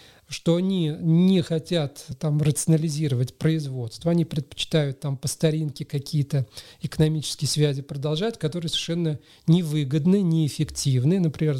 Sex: male